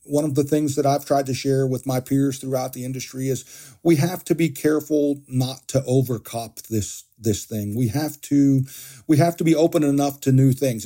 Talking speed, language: 215 wpm, English